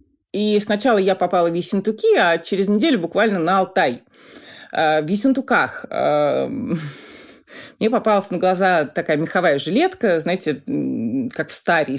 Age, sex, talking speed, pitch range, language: 30-49, female, 125 wpm, 160-235 Hz, Russian